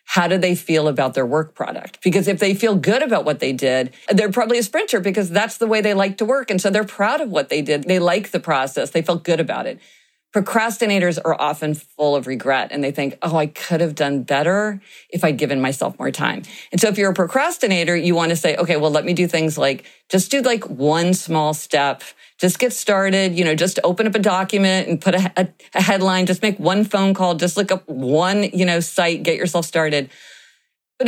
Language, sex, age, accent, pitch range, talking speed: English, female, 50-69, American, 160-210 Hz, 235 wpm